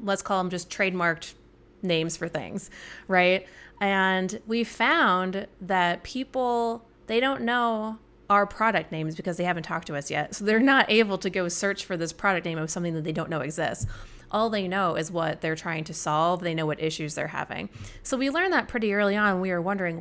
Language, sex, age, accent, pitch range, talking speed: English, female, 30-49, American, 165-205 Hz, 210 wpm